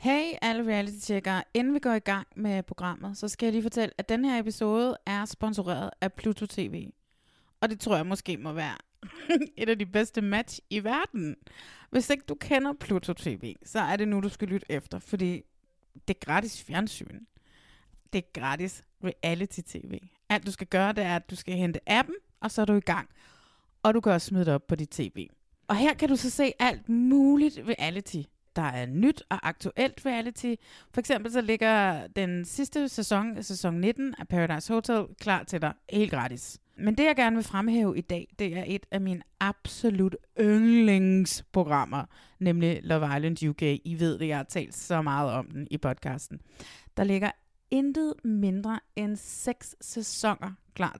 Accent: native